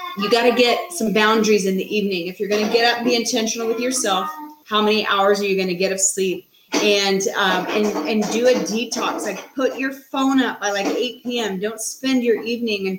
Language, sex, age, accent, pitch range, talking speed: English, female, 30-49, American, 190-230 Hz, 235 wpm